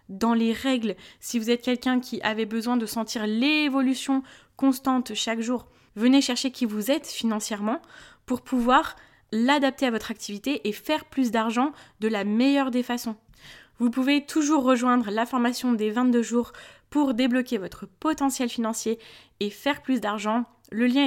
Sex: female